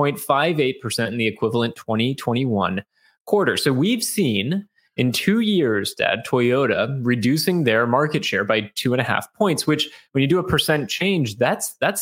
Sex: male